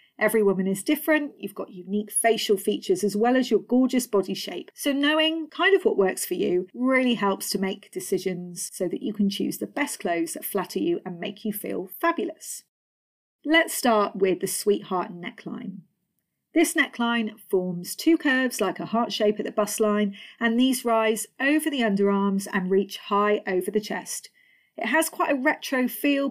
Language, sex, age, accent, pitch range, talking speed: English, female, 40-59, British, 200-275 Hz, 185 wpm